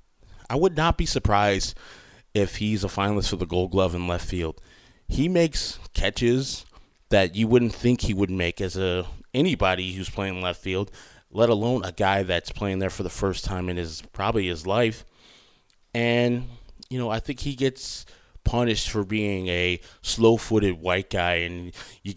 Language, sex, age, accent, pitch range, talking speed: English, male, 20-39, American, 90-115 Hz, 175 wpm